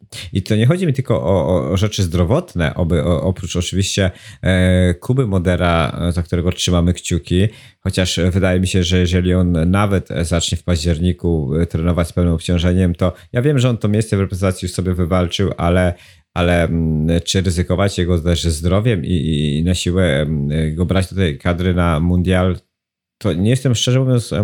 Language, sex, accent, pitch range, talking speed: Polish, male, native, 85-100 Hz, 170 wpm